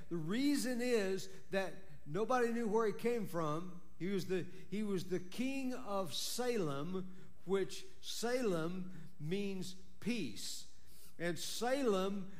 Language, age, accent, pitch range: English, 60-79, American, 160-195 Hz